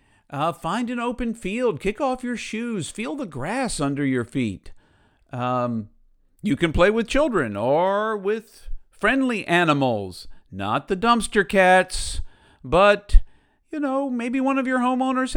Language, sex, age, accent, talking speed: English, male, 50-69, American, 145 wpm